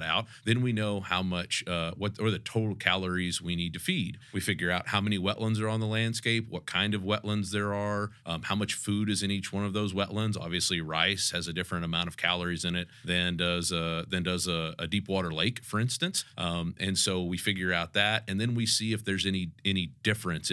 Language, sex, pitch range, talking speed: English, male, 85-105 Hz, 235 wpm